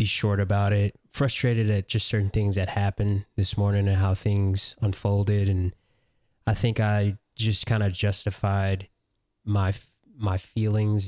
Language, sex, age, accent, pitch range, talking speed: English, male, 20-39, American, 100-115 Hz, 145 wpm